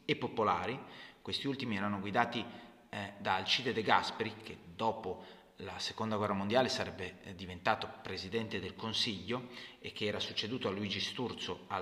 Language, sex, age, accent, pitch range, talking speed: Italian, male, 30-49, native, 110-175 Hz, 150 wpm